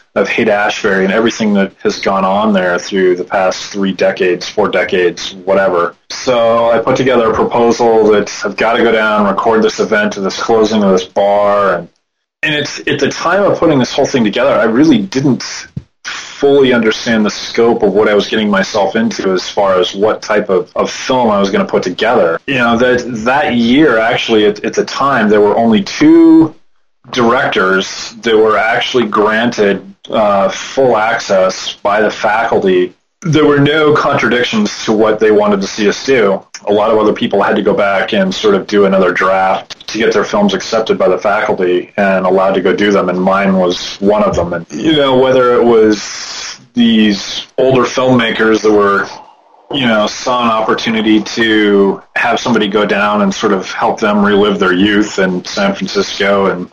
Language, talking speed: English, 195 wpm